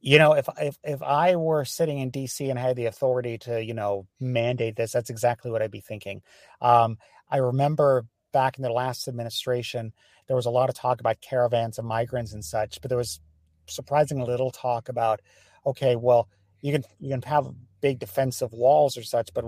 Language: English